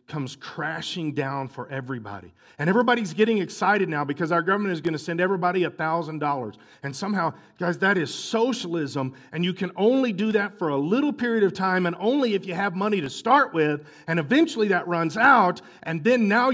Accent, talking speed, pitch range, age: American, 200 wpm, 155-245 Hz, 40-59